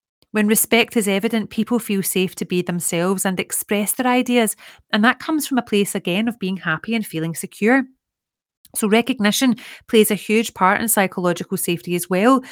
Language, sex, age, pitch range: English, female, 30-49, 185-230 Hz